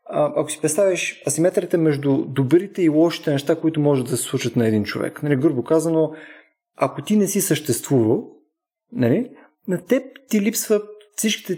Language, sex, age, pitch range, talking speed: Bulgarian, male, 20-39, 120-180 Hz, 165 wpm